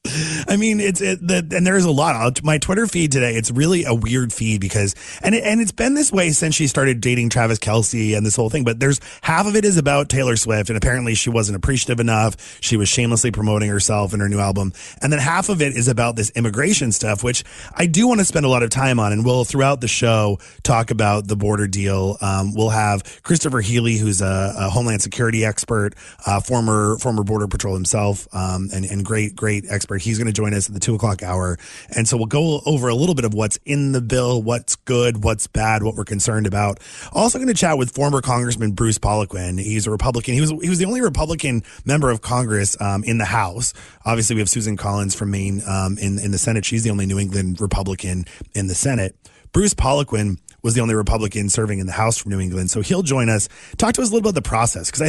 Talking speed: 240 wpm